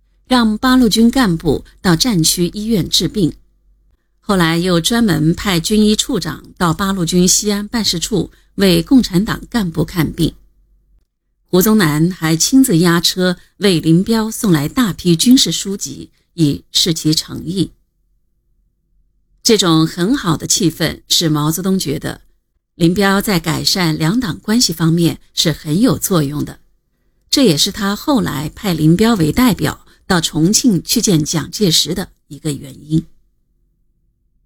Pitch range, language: 160-200 Hz, Chinese